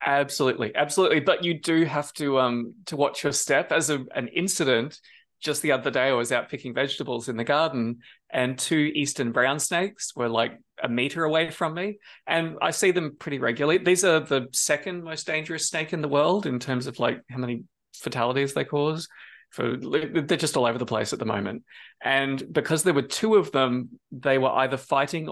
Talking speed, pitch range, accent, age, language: 205 wpm, 125-160 Hz, Australian, 20-39, English